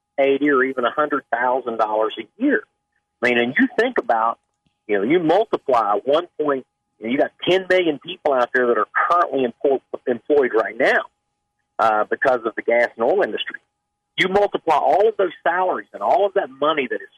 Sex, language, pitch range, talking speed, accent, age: male, English, 115-200 Hz, 190 wpm, American, 50-69